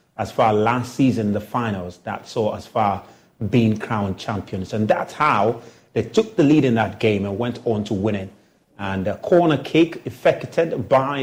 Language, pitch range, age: English, 105-135 Hz, 30-49